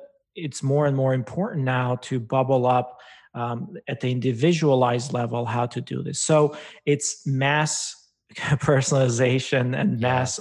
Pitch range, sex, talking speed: 125-140 Hz, male, 140 wpm